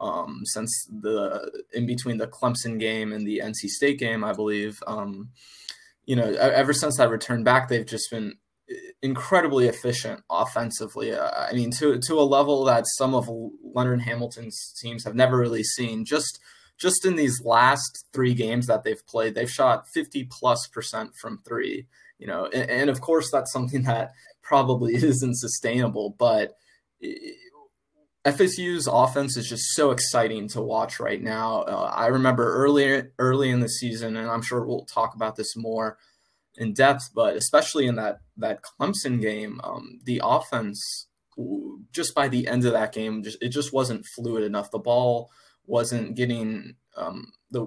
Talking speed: 165 wpm